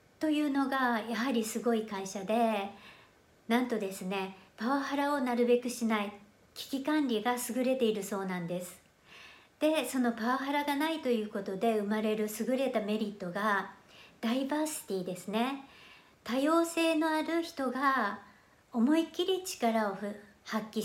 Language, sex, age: Japanese, male, 60-79